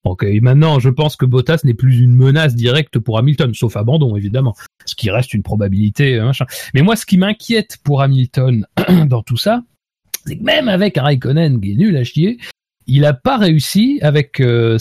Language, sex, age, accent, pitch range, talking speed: French, male, 30-49, French, 115-170 Hz, 205 wpm